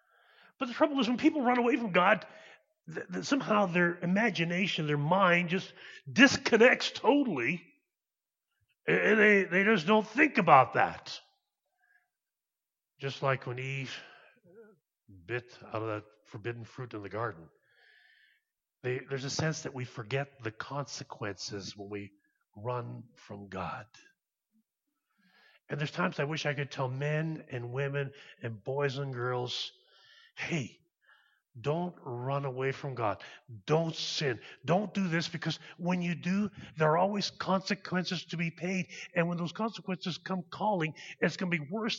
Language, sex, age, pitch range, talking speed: English, male, 40-59, 130-205 Hz, 145 wpm